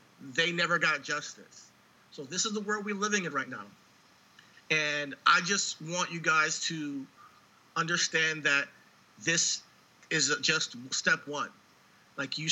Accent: American